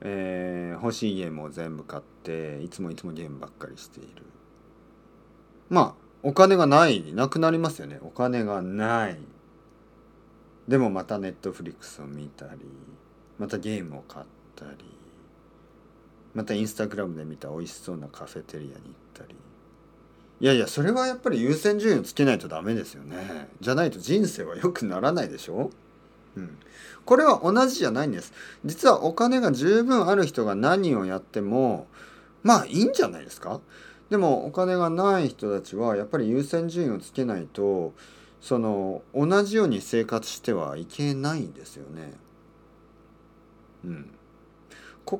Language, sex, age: Japanese, male, 40-59